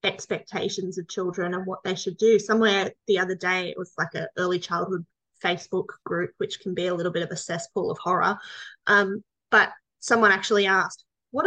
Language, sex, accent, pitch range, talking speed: English, female, Australian, 195-260 Hz, 195 wpm